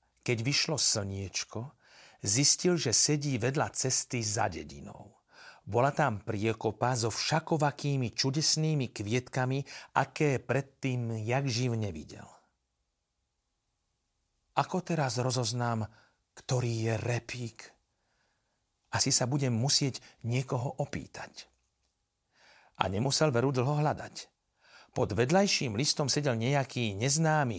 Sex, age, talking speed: male, 40-59, 100 wpm